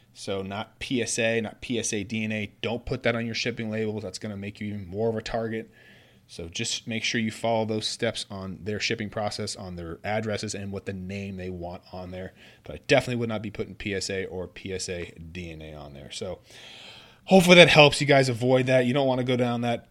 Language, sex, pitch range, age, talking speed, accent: English, male, 95-120 Hz, 30-49, 225 wpm, American